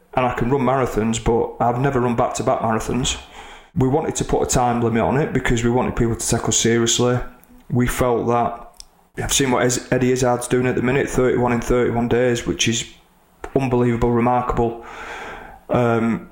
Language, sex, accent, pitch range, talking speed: English, male, British, 115-130 Hz, 180 wpm